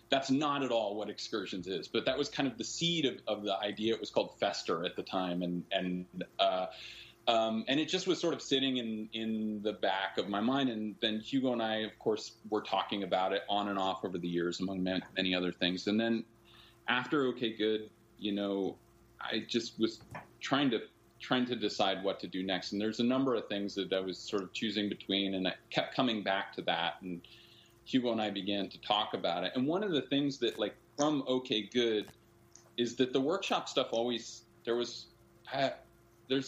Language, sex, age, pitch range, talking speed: English, male, 30-49, 100-125 Hz, 215 wpm